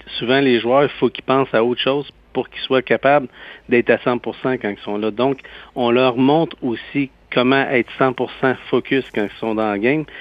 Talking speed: 210 wpm